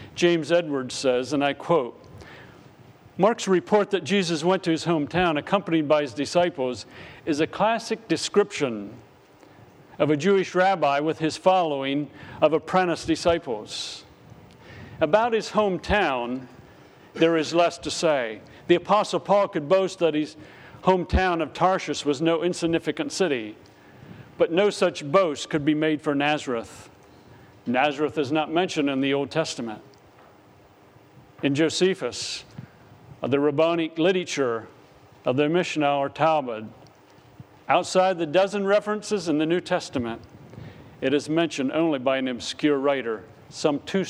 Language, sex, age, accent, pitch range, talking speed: English, male, 50-69, American, 125-170 Hz, 135 wpm